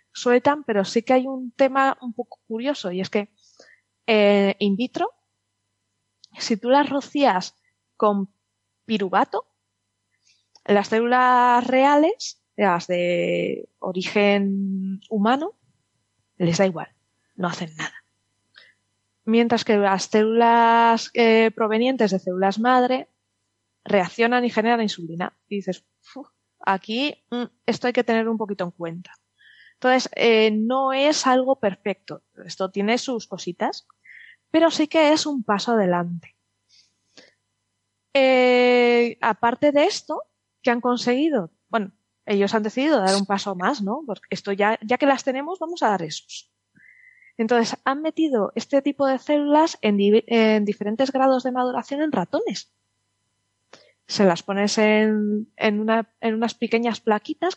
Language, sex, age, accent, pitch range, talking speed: Spanish, female, 20-39, Spanish, 195-260 Hz, 135 wpm